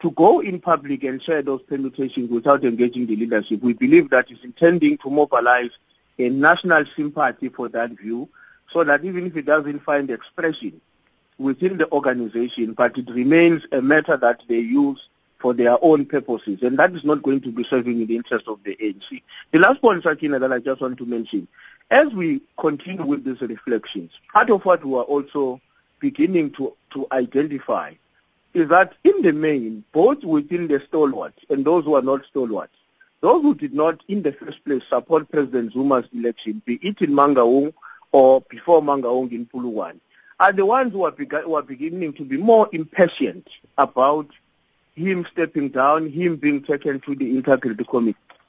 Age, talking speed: 50-69, 185 wpm